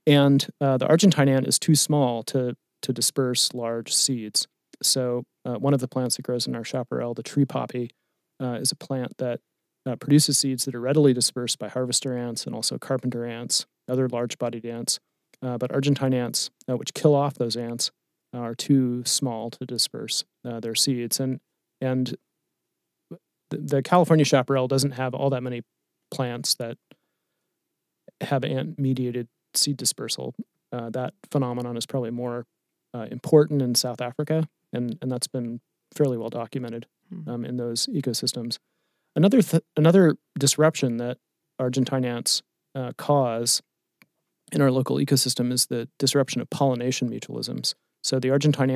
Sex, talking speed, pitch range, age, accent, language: male, 155 wpm, 120-140 Hz, 30-49, American, English